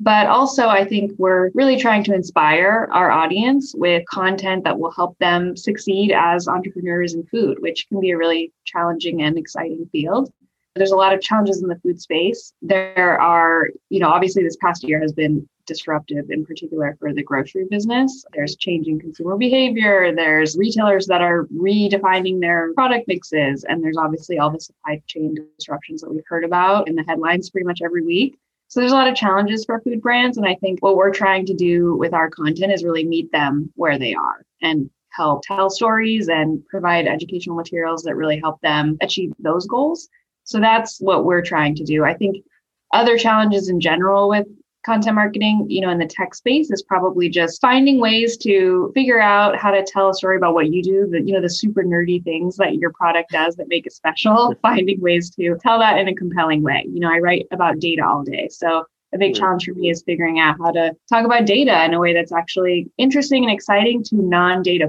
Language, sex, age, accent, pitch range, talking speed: English, female, 20-39, American, 165-205 Hz, 210 wpm